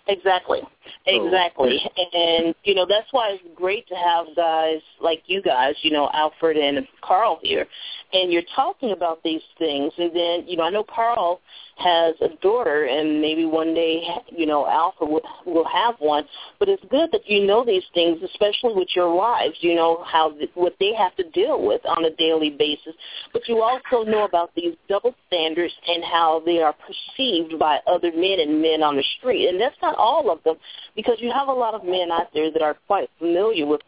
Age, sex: 40-59, female